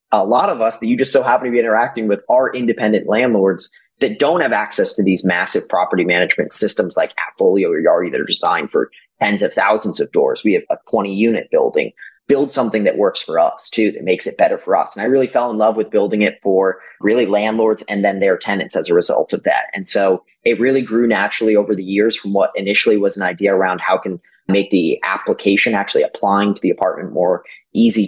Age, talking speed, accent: 30-49, 225 wpm, American